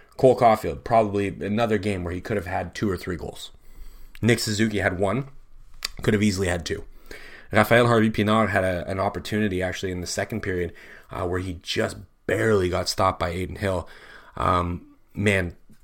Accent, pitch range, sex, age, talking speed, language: American, 90-110 Hz, male, 30-49, 175 wpm, English